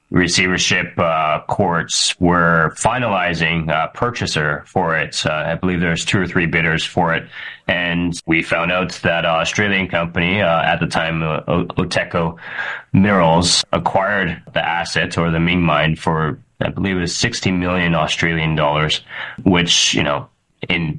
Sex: male